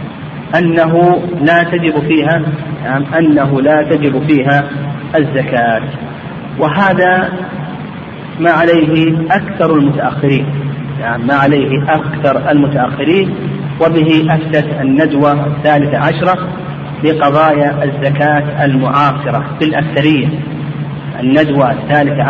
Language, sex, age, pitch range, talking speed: Arabic, male, 40-59, 145-180 Hz, 90 wpm